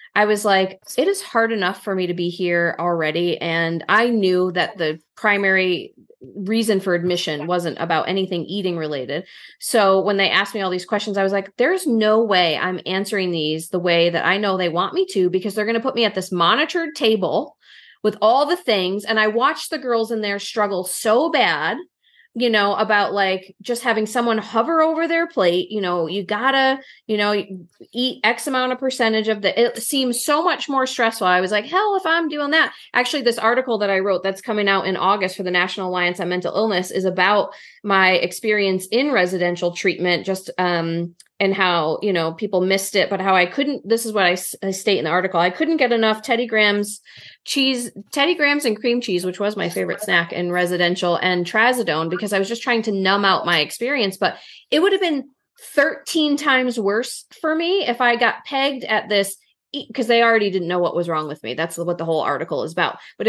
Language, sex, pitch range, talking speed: English, female, 180-240 Hz, 215 wpm